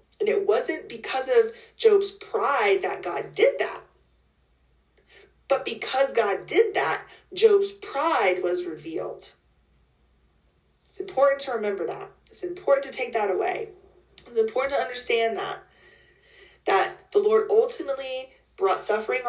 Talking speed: 130 wpm